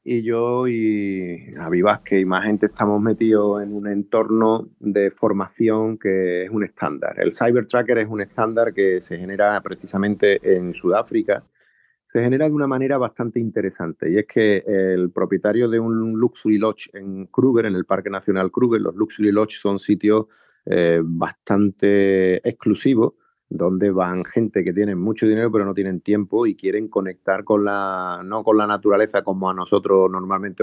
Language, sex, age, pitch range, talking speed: Spanish, male, 30-49, 95-115 Hz, 170 wpm